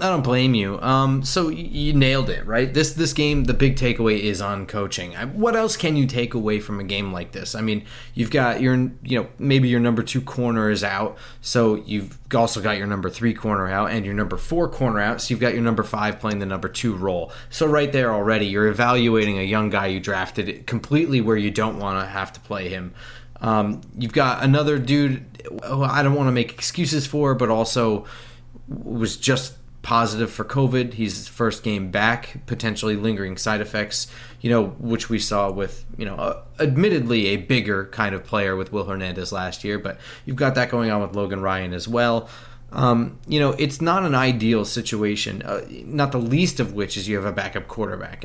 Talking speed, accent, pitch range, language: 215 wpm, American, 105-130 Hz, English